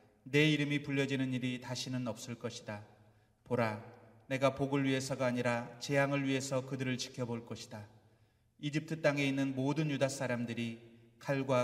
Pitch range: 115-140 Hz